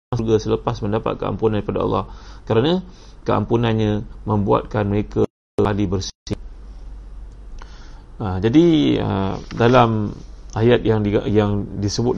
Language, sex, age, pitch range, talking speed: Malay, male, 30-49, 105-115 Hz, 95 wpm